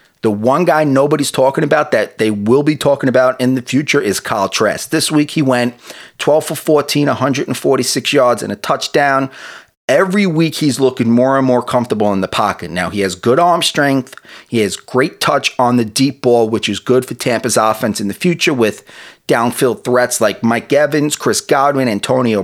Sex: male